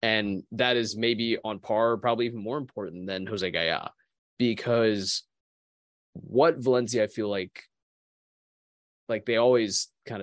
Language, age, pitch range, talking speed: English, 20-39, 95-120 Hz, 135 wpm